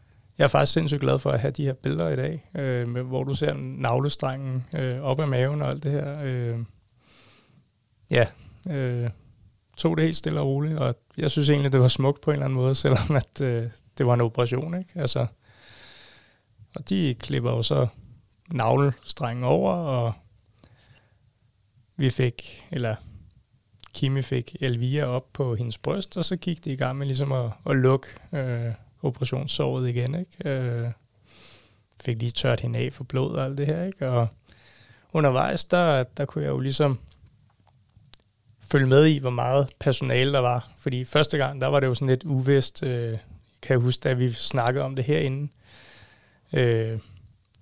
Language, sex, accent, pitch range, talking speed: Danish, male, native, 115-140 Hz, 180 wpm